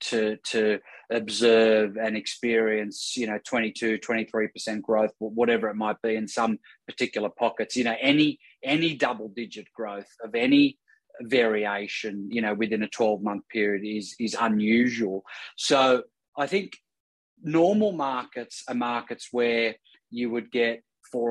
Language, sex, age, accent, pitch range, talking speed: English, male, 30-49, Australian, 110-130 Hz, 130 wpm